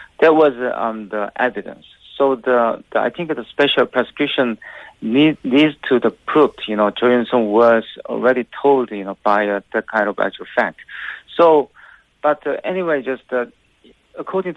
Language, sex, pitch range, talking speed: English, male, 110-130 Hz, 175 wpm